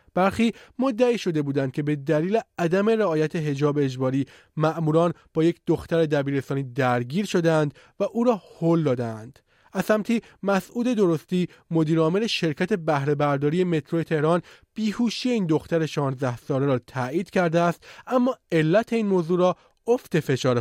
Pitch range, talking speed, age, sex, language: 145-195 Hz, 145 wpm, 30-49, male, Persian